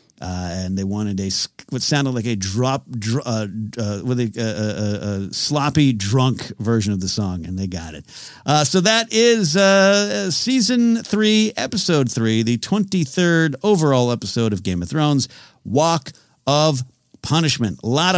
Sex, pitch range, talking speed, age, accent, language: male, 125-185 Hz, 165 wpm, 50-69, American, English